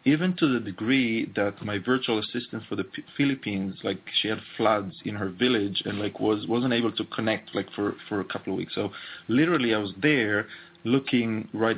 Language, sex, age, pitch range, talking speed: English, male, 30-49, 100-120 Hz, 200 wpm